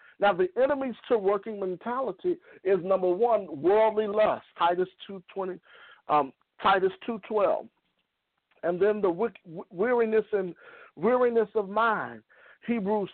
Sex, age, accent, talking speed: male, 50-69, American, 130 wpm